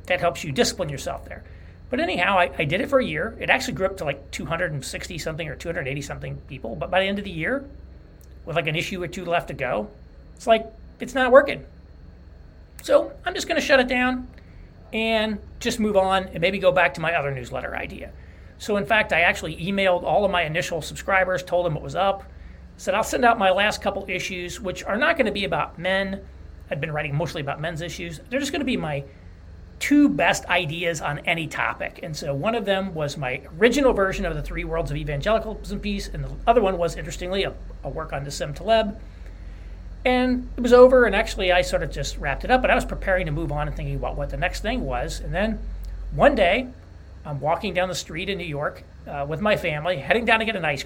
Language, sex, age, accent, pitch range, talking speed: English, male, 40-59, American, 140-200 Hz, 235 wpm